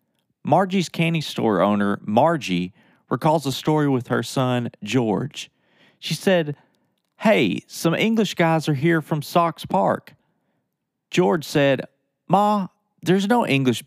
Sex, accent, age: male, American, 40-59